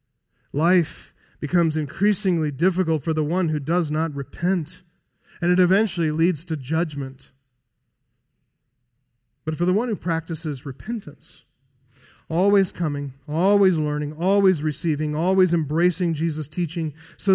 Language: English